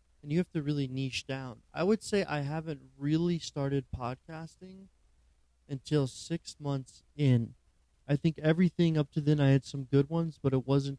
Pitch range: 120-150 Hz